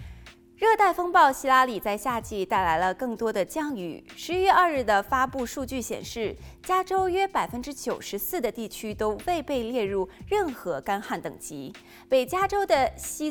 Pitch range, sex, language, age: 215-350 Hz, female, Chinese, 20-39